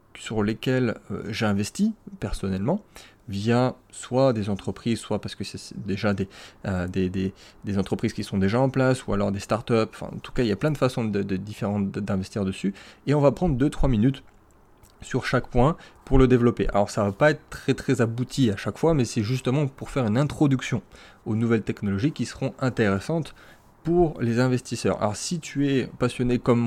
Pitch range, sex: 100-130 Hz, male